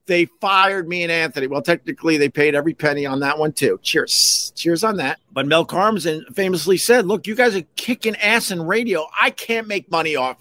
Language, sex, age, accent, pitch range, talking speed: English, male, 50-69, American, 140-200 Hz, 215 wpm